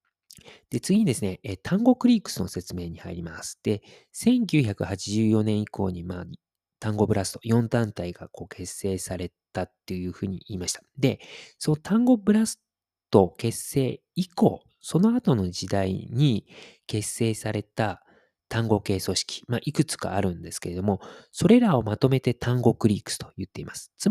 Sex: male